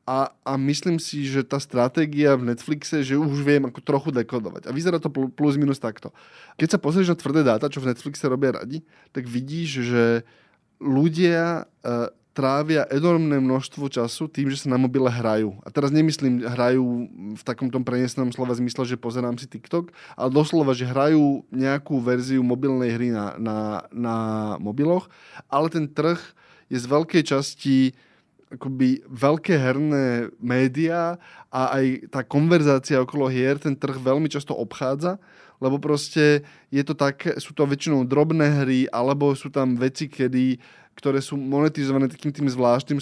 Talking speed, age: 160 wpm, 20-39